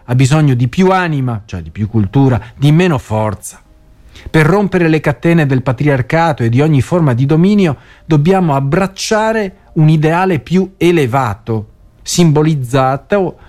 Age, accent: 40-59, native